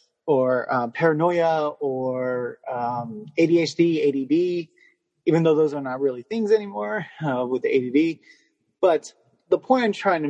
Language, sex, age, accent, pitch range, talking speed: English, male, 30-49, American, 130-160 Hz, 145 wpm